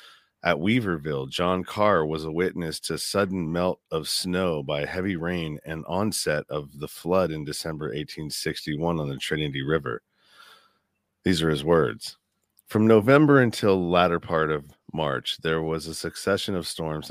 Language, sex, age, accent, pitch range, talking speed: English, male, 40-59, American, 75-90 Hz, 155 wpm